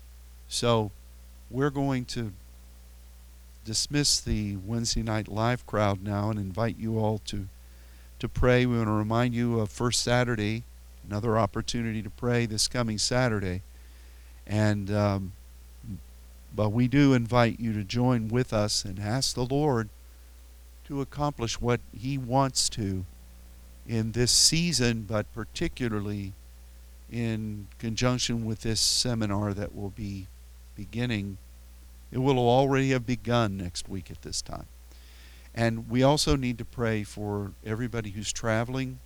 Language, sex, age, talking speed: English, male, 50-69, 135 wpm